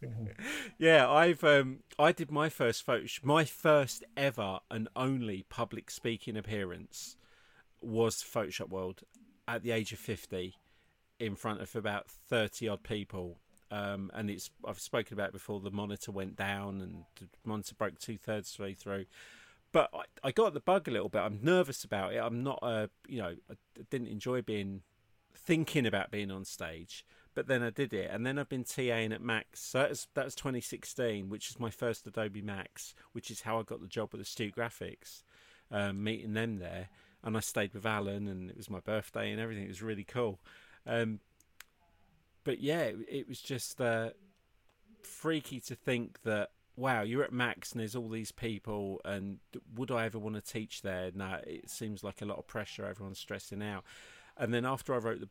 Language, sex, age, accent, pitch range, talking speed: English, male, 40-59, British, 100-120 Hz, 195 wpm